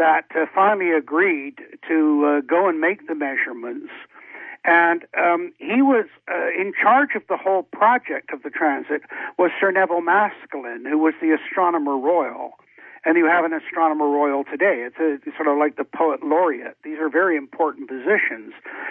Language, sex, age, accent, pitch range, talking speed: English, male, 60-79, American, 150-200 Hz, 170 wpm